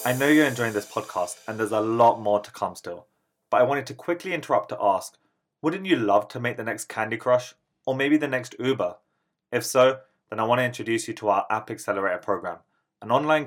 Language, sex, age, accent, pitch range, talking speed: English, male, 20-39, British, 105-130 Hz, 225 wpm